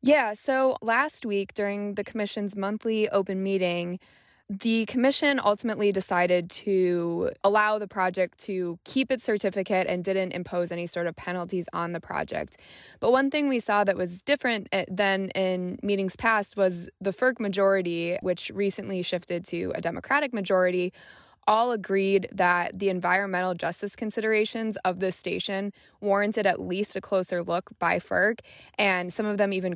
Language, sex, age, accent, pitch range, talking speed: English, female, 20-39, American, 180-215 Hz, 155 wpm